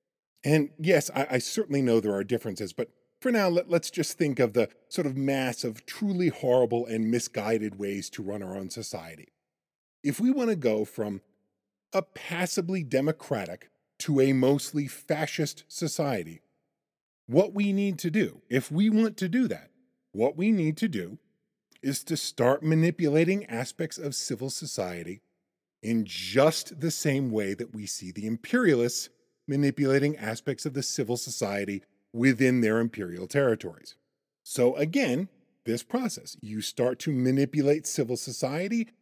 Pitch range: 115-160 Hz